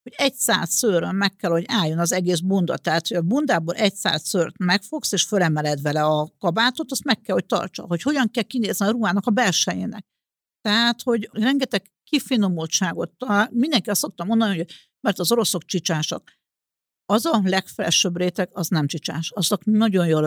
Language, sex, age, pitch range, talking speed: Hungarian, female, 60-79, 175-225 Hz, 175 wpm